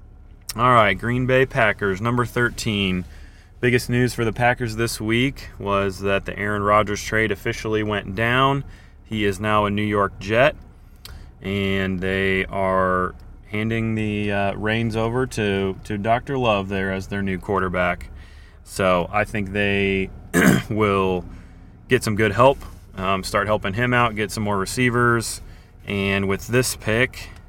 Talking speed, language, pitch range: 150 wpm, English, 95-115 Hz